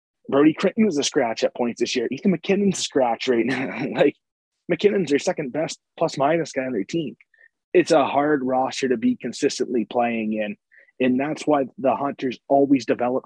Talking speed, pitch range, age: 190 wpm, 125-160 Hz, 20-39